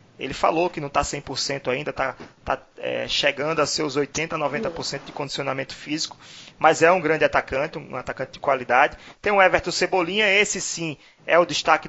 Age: 20-39